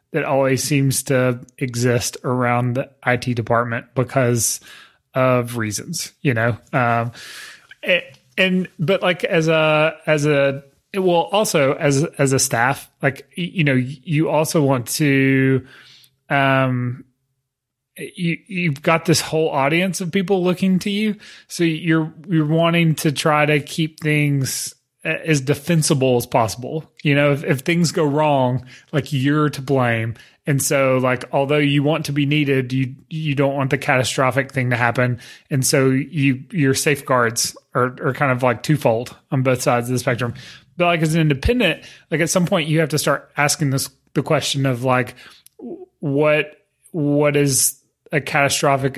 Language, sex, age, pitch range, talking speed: English, male, 30-49, 130-155 Hz, 160 wpm